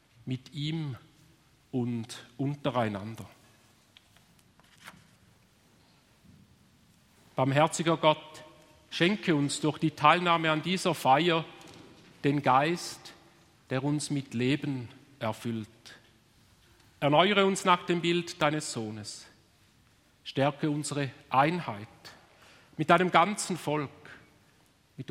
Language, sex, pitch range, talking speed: German, male, 135-170 Hz, 85 wpm